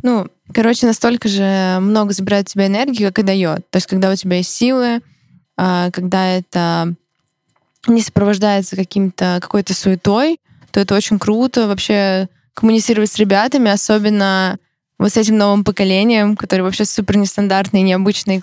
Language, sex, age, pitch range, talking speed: Russian, female, 20-39, 190-220 Hz, 145 wpm